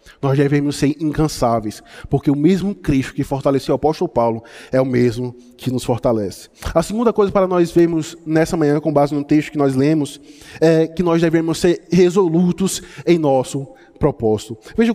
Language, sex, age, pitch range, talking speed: Portuguese, male, 20-39, 135-170 Hz, 175 wpm